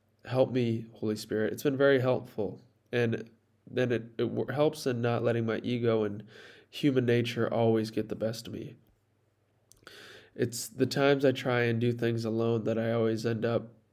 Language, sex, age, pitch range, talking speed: English, male, 20-39, 110-125 Hz, 175 wpm